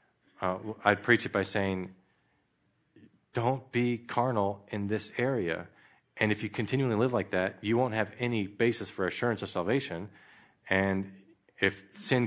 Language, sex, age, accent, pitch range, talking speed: English, male, 40-59, American, 95-120 Hz, 150 wpm